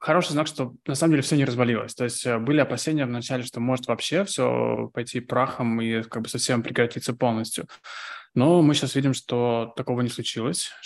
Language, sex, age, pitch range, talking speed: Russian, male, 20-39, 115-130 Hz, 190 wpm